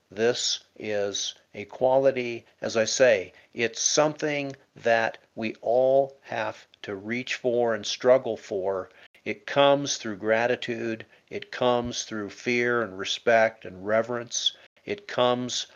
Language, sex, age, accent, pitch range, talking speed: English, male, 50-69, American, 110-130 Hz, 125 wpm